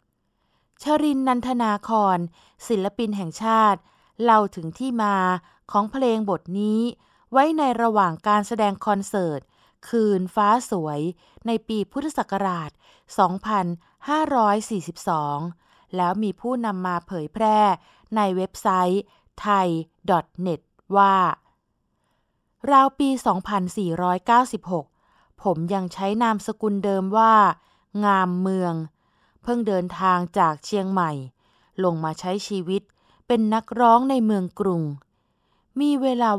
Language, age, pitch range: Thai, 20-39, 180-225 Hz